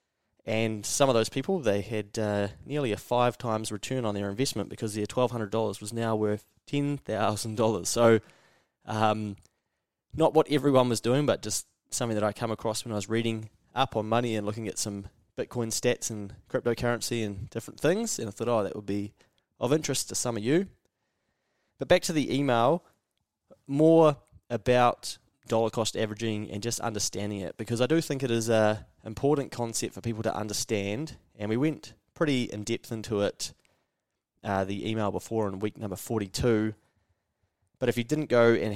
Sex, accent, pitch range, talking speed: male, Australian, 105-120 Hz, 180 wpm